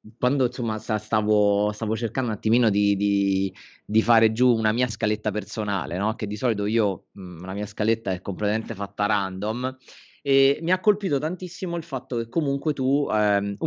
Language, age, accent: Italian, 30-49, native